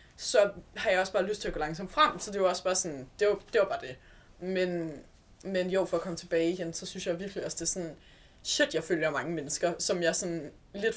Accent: native